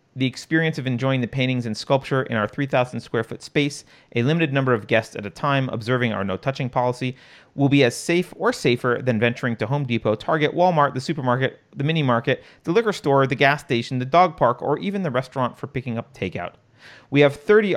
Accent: American